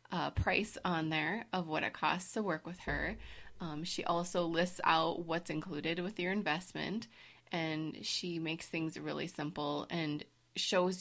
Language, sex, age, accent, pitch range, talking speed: English, female, 20-39, American, 160-190 Hz, 165 wpm